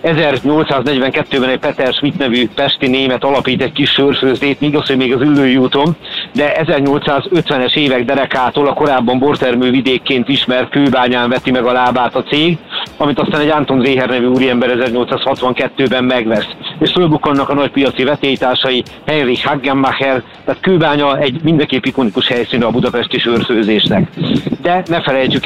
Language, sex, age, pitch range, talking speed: Hungarian, male, 50-69, 125-145 Hz, 140 wpm